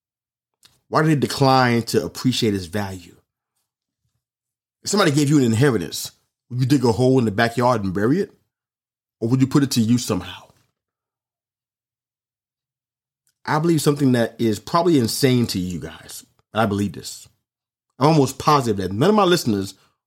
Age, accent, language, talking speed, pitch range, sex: 30-49, American, English, 165 wpm, 110-130 Hz, male